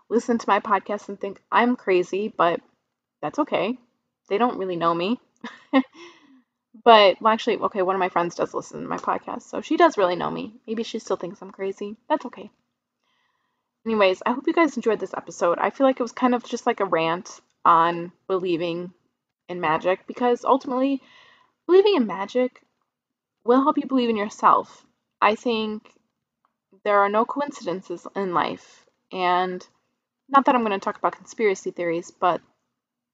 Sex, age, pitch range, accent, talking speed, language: female, 20-39, 190-255 Hz, American, 175 wpm, English